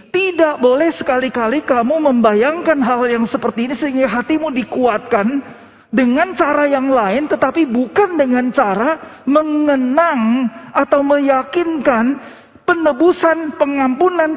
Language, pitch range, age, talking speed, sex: Indonesian, 235-315 Hz, 40-59, 105 wpm, male